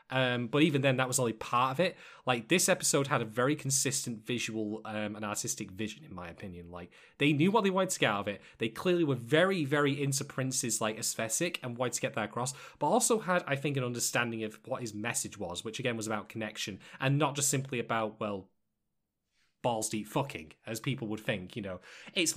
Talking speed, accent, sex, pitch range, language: 225 wpm, British, male, 110-140 Hz, English